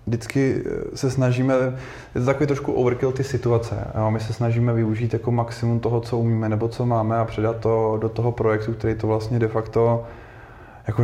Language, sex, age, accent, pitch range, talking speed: Czech, male, 20-39, native, 110-120 Hz, 190 wpm